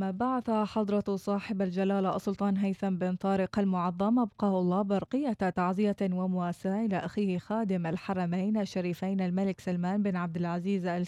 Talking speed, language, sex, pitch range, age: 135 wpm, Arabic, female, 180-210 Hz, 20-39